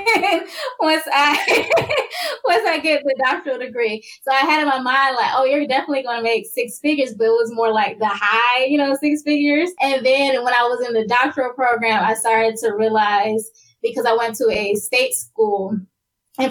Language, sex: English, female